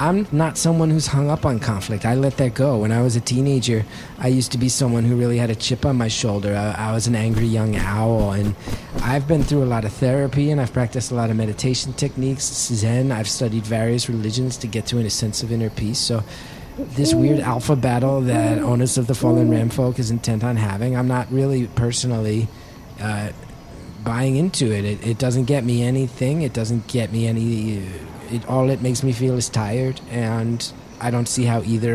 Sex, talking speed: male, 215 wpm